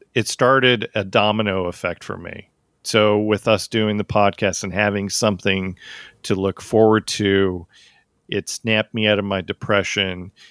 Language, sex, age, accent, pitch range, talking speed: English, male, 40-59, American, 100-115 Hz, 155 wpm